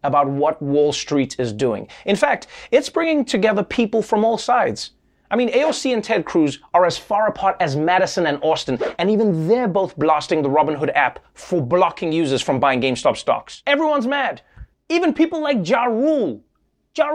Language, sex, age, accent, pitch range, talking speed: English, male, 30-49, American, 160-250 Hz, 180 wpm